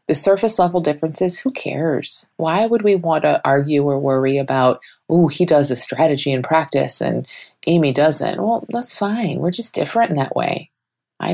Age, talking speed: 30-49, 185 wpm